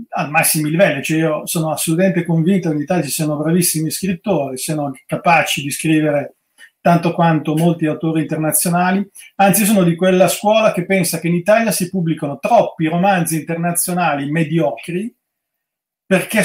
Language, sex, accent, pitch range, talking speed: Italian, male, native, 155-190 Hz, 145 wpm